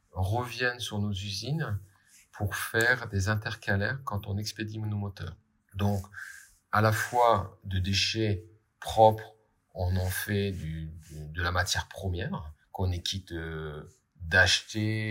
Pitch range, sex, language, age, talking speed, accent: 95-110 Hz, male, English, 30-49, 125 wpm, French